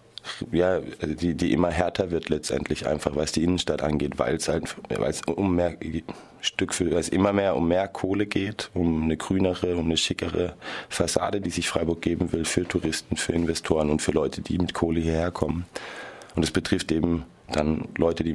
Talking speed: 190 wpm